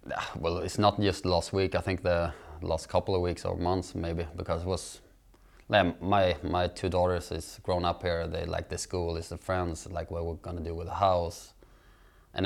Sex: male